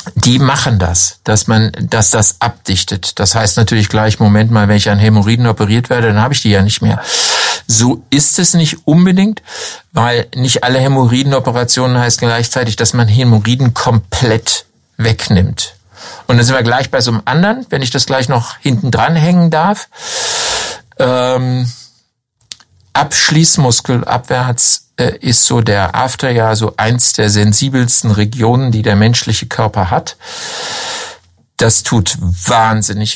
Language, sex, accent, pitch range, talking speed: German, male, German, 105-130 Hz, 150 wpm